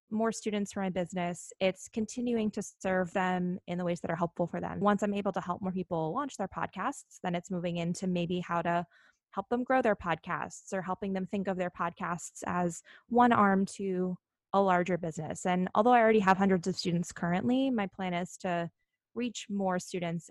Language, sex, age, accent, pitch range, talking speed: English, female, 20-39, American, 175-215 Hz, 205 wpm